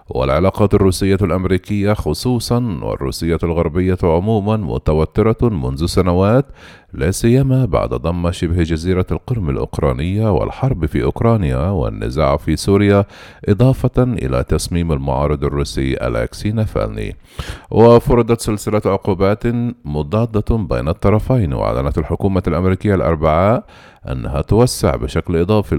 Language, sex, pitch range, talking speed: Arabic, male, 80-110 Hz, 105 wpm